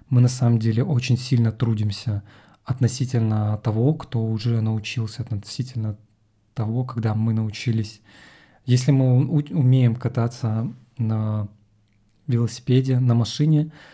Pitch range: 115-130 Hz